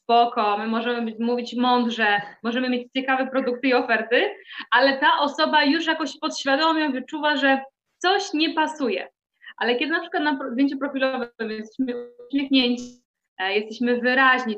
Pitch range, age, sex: 225-275 Hz, 20-39, female